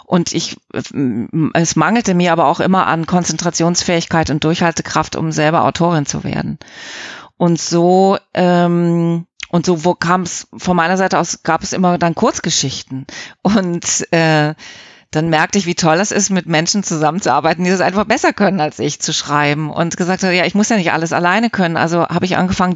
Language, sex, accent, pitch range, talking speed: German, female, German, 160-185 Hz, 180 wpm